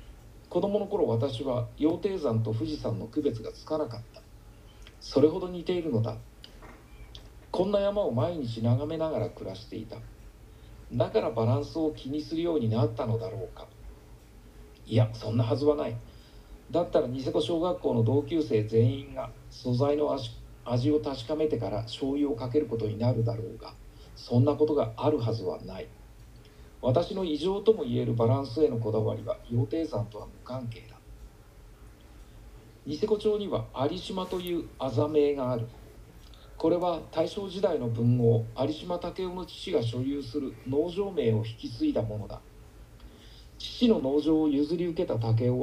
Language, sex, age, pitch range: Japanese, male, 40-59, 110-155 Hz